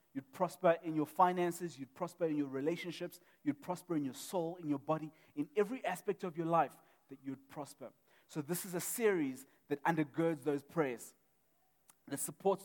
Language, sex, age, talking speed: English, male, 30-49, 180 wpm